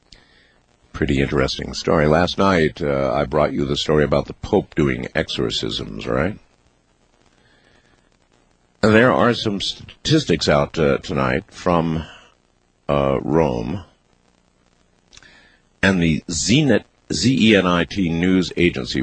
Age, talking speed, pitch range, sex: 50-69, 100 wpm, 70-115 Hz, male